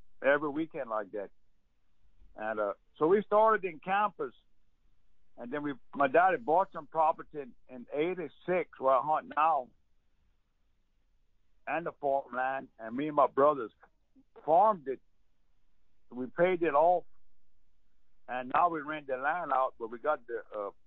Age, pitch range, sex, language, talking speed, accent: 60-79, 125-165 Hz, male, English, 150 wpm, American